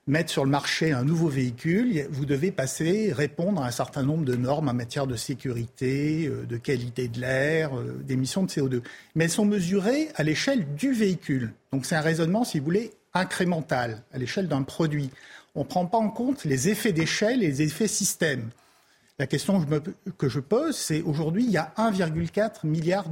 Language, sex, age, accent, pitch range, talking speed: French, male, 50-69, French, 140-195 Hz, 190 wpm